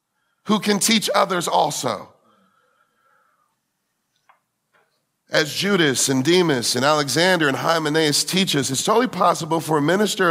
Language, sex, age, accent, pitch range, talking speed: English, male, 40-59, American, 165-245 Hz, 120 wpm